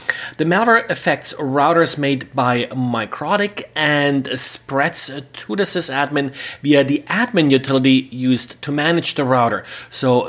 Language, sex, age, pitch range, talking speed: English, male, 30-49, 125-150 Hz, 130 wpm